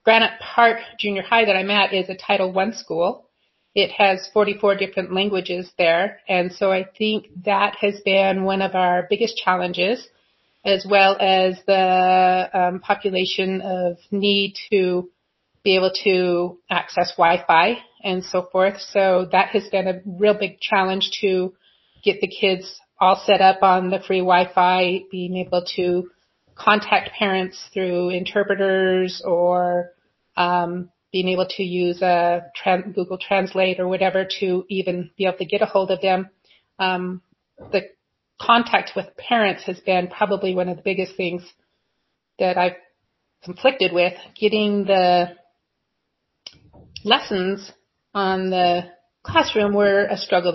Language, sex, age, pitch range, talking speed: English, female, 30-49, 180-200 Hz, 140 wpm